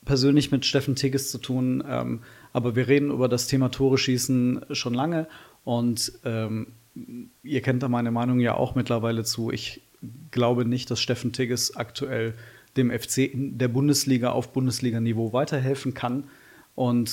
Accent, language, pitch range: German, German, 125-155 Hz